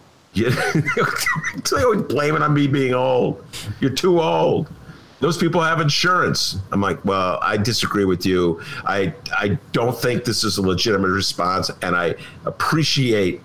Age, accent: 50-69, American